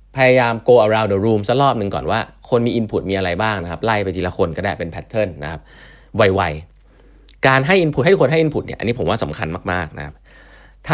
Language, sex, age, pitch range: Thai, male, 20-39, 100-140 Hz